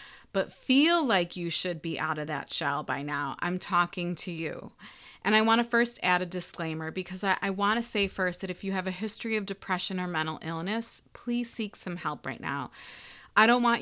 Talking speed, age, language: 220 wpm, 30-49, English